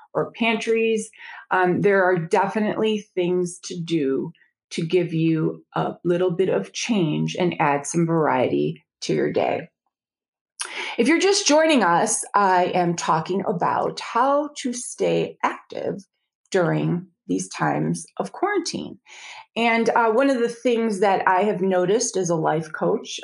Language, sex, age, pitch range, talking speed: English, female, 30-49, 165-220 Hz, 145 wpm